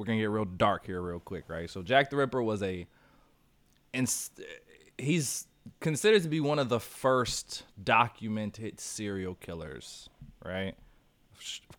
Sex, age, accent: male, 20-39, American